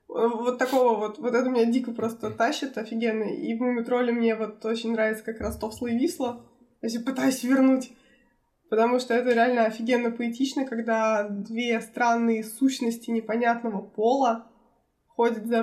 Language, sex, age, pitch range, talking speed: Russian, female, 20-39, 230-250 Hz, 140 wpm